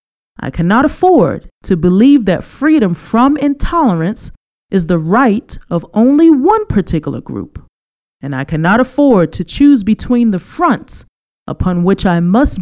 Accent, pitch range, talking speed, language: American, 160-250 Hz, 145 wpm, English